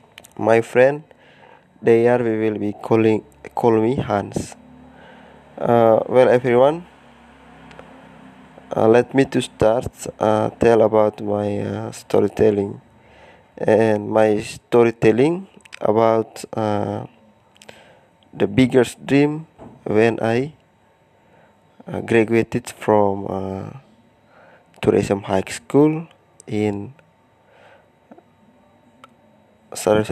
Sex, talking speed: male, 85 wpm